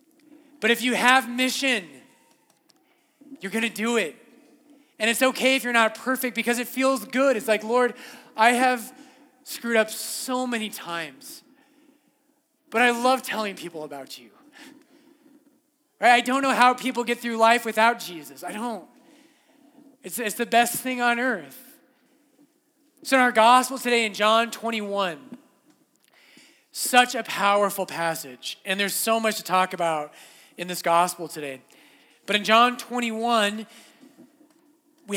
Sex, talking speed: male, 145 wpm